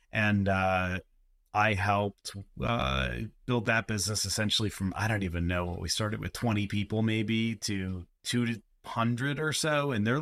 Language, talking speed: English, 165 wpm